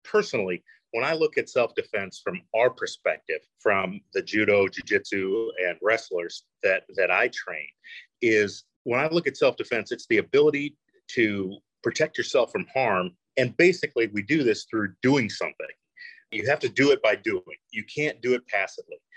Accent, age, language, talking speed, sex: American, 40-59, English, 165 wpm, male